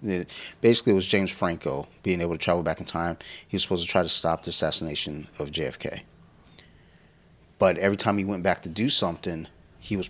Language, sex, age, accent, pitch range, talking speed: English, male, 30-49, American, 85-100 Hz, 200 wpm